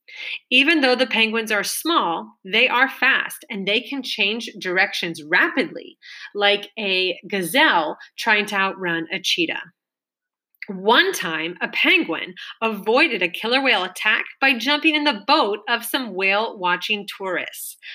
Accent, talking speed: American, 135 wpm